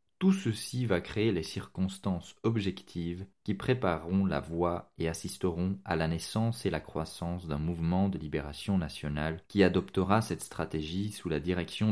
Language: English